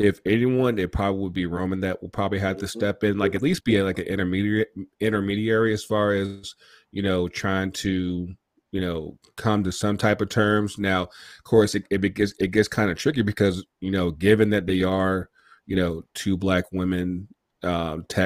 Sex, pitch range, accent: male, 95-105 Hz, American